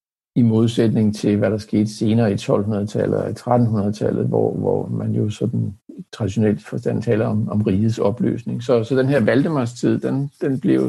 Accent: native